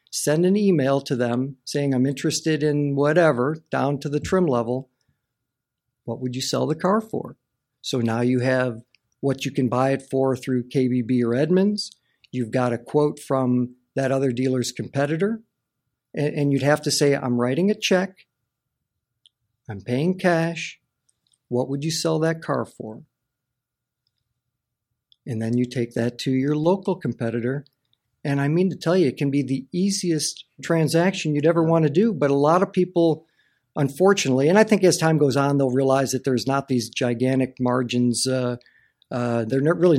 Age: 50-69